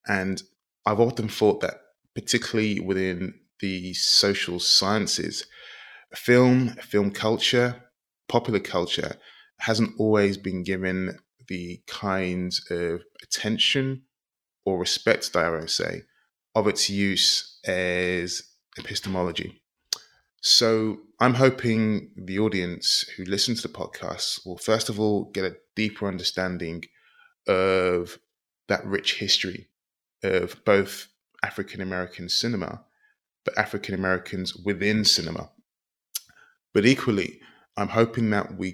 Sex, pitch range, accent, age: male, 90-110 Hz, British, 20-39